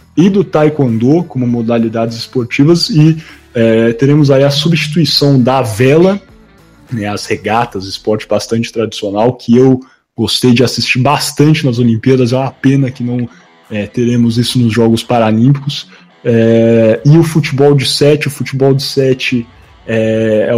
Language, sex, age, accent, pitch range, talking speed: Portuguese, male, 20-39, Brazilian, 115-135 Hz, 150 wpm